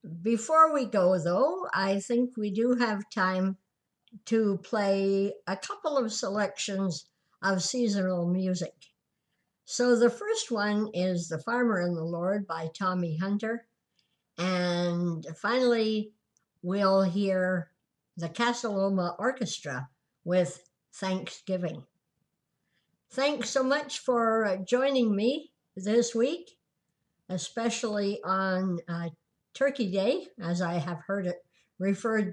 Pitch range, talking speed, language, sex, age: 175-230 Hz, 110 wpm, English, male, 60-79